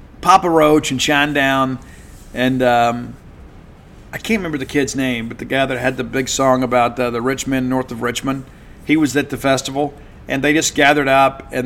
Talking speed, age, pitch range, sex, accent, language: 205 wpm, 50-69, 125-150 Hz, male, American, English